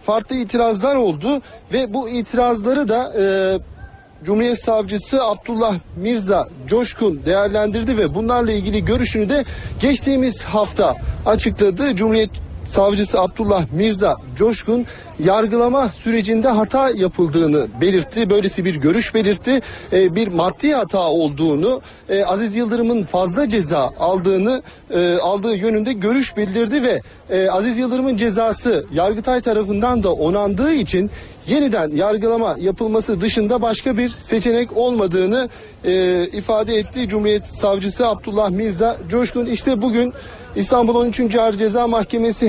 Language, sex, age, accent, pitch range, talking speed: Turkish, male, 40-59, native, 195-240 Hz, 120 wpm